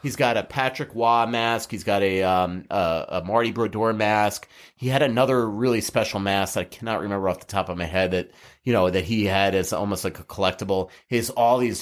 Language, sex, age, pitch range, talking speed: English, male, 30-49, 95-120 Hz, 230 wpm